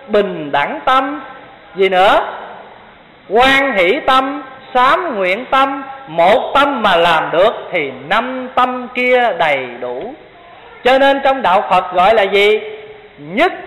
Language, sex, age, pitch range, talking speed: Vietnamese, male, 20-39, 195-270 Hz, 135 wpm